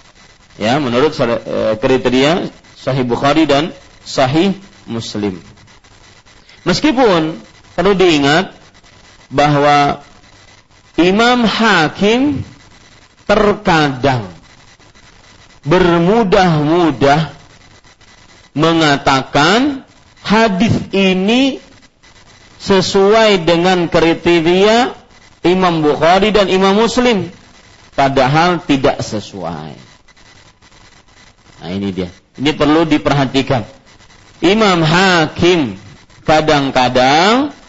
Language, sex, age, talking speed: Malay, male, 40-59, 60 wpm